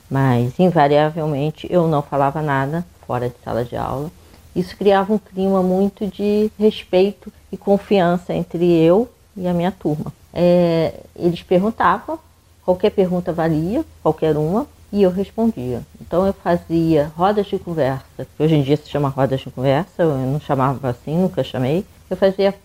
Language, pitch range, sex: Portuguese, 145-185 Hz, female